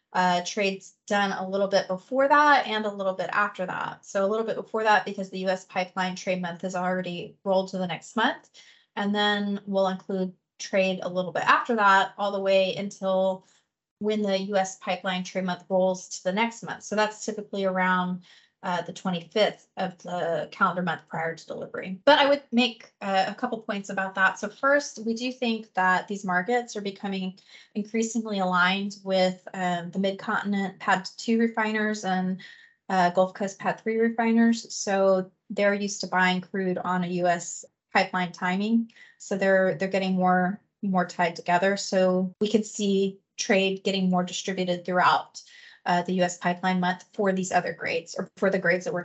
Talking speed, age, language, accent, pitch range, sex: 185 wpm, 20-39, English, American, 185-215 Hz, female